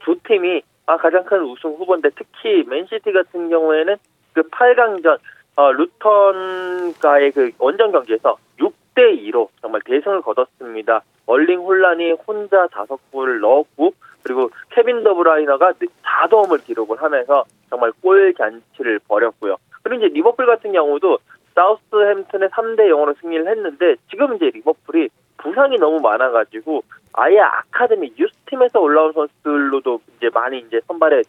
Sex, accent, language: male, native, Korean